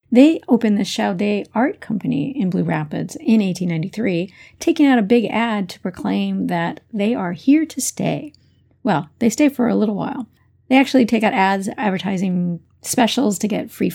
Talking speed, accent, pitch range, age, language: 175 wpm, American, 190-250 Hz, 40-59, English